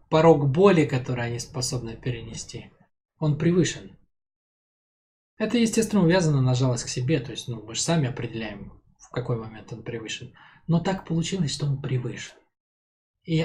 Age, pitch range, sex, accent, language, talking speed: 20-39, 120-145 Hz, male, native, Russian, 145 wpm